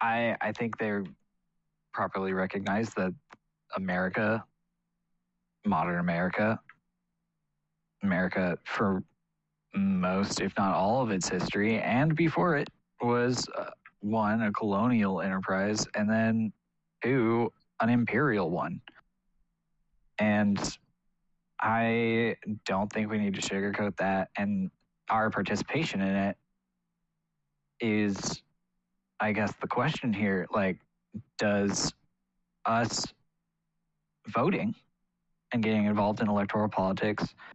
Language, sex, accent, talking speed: English, male, American, 100 wpm